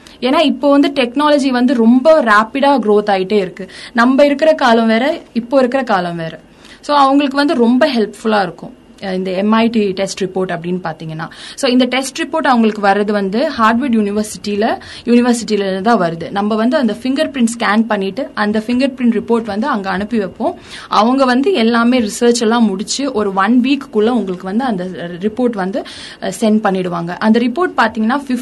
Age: 20-39